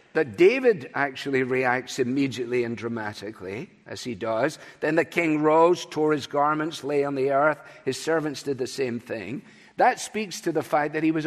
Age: 50-69